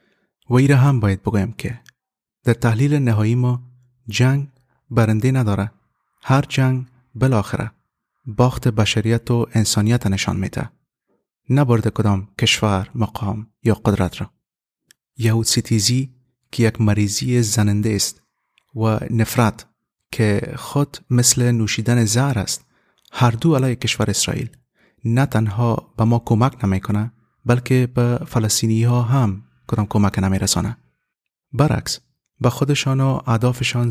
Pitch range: 105-125 Hz